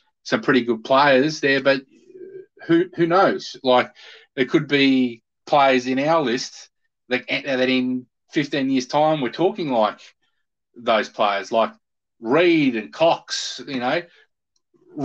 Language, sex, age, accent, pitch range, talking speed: English, male, 30-49, Australian, 130-175 Hz, 135 wpm